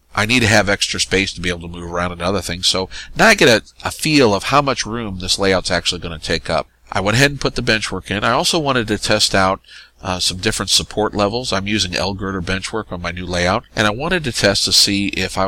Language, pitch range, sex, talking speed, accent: English, 85-105 Hz, male, 270 wpm, American